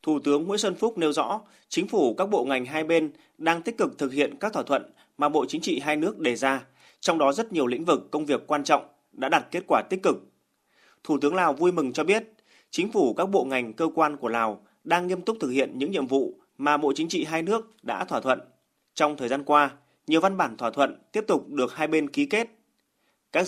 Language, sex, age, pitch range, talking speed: Vietnamese, male, 20-39, 140-185 Hz, 245 wpm